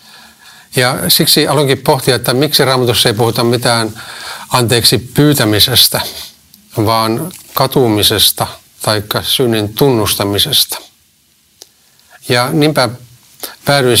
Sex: male